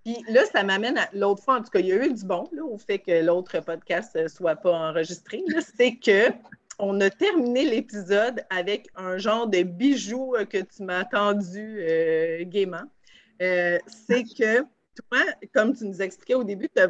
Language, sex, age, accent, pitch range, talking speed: French, female, 30-49, Canadian, 175-215 Hz, 195 wpm